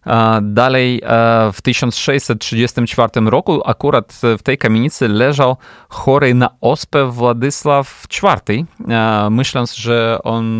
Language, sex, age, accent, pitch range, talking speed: Polish, male, 30-49, native, 110-135 Hz, 95 wpm